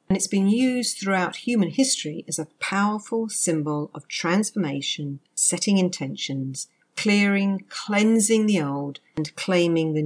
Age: 50-69